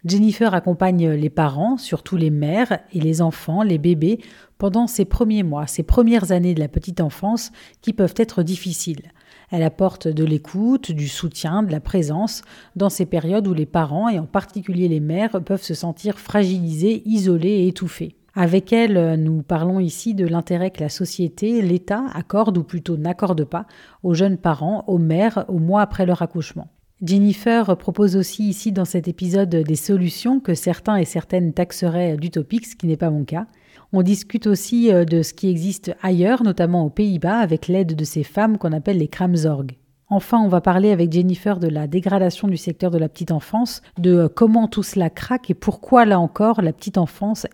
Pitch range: 165-205 Hz